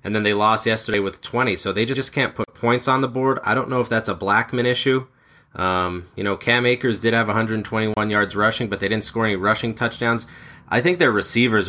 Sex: male